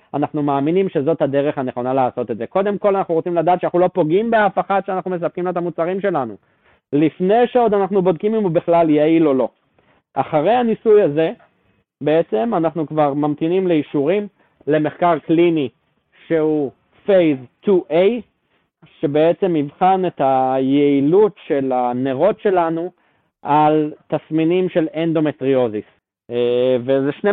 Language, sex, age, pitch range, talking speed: Hebrew, male, 20-39, 140-185 Hz, 130 wpm